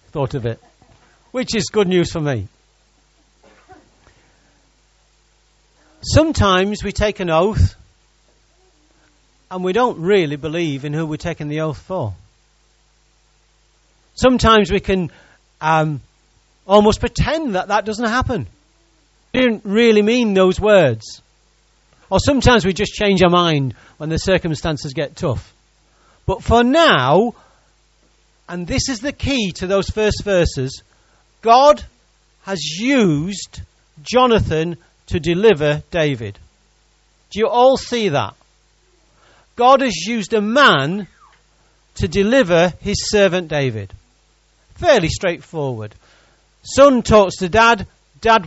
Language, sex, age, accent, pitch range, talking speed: English, male, 40-59, British, 145-210 Hz, 115 wpm